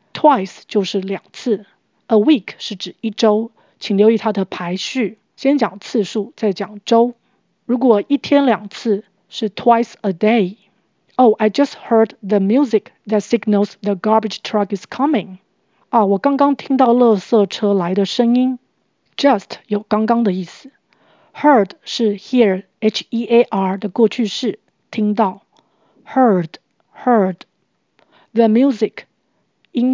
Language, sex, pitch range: Chinese, female, 200-240 Hz